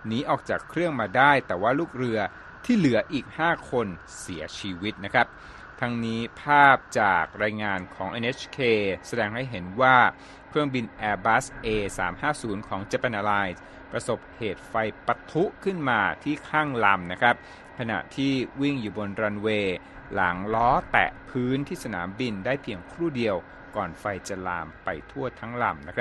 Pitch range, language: 105-140 Hz, Thai